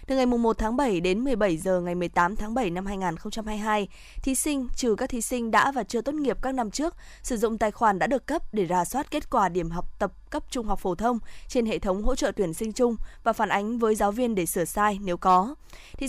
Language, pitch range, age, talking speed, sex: Vietnamese, 200-255 Hz, 20-39, 255 wpm, female